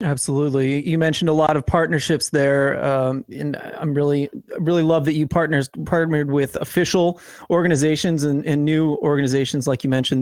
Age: 30-49